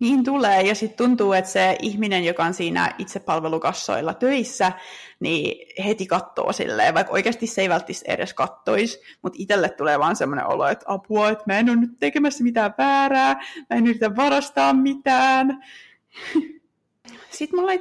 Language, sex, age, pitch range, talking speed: Finnish, female, 20-39, 190-260 Hz, 160 wpm